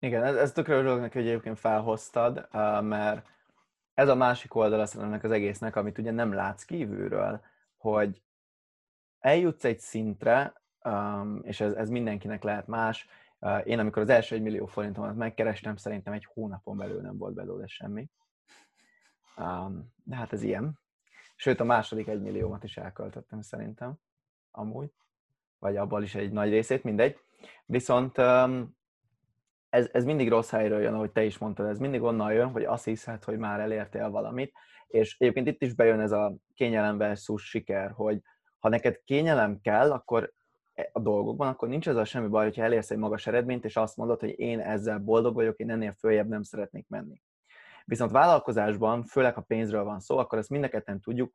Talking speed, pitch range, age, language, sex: 160 wpm, 105-120 Hz, 20-39, Hungarian, male